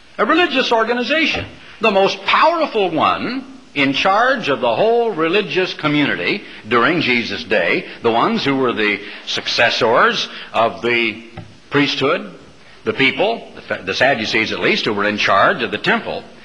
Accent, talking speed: American, 140 wpm